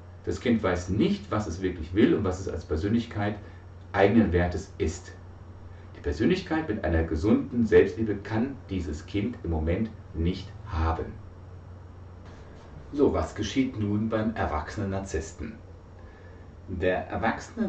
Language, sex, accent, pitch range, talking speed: German, male, German, 80-105 Hz, 130 wpm